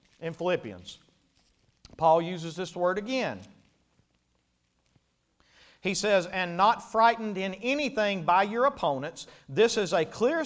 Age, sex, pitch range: 40-59, male, 190-280 Hz